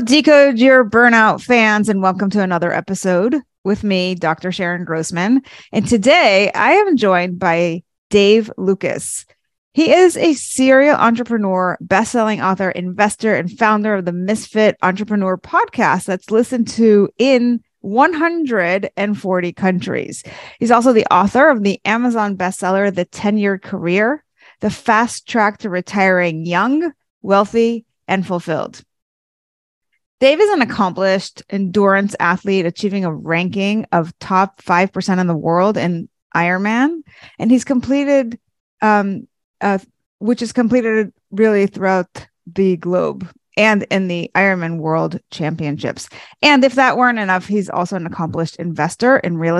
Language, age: English, 30-49